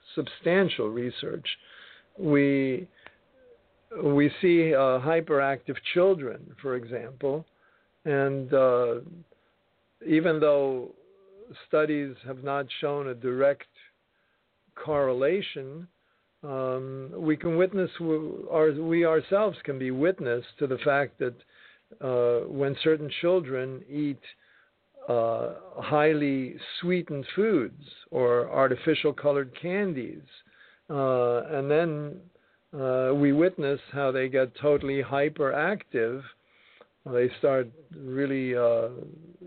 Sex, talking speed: male, 95 wpm